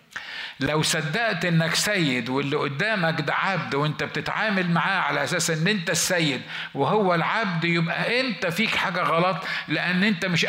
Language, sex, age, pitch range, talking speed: Arabic, male, 50-69, 155-195 Hz, 150 wpm